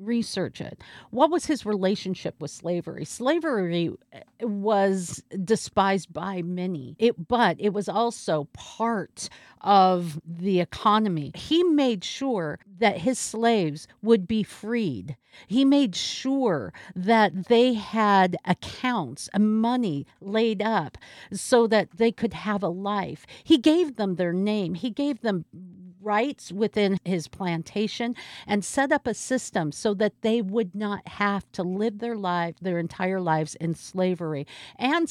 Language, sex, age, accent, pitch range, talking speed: English, female, 50-69, American, 180-235 Hz, 140 wpm